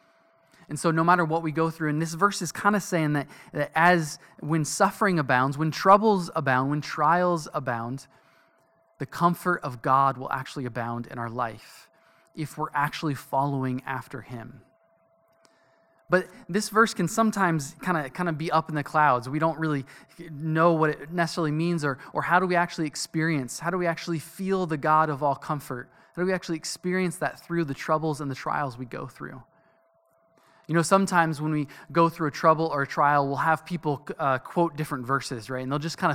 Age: 20-39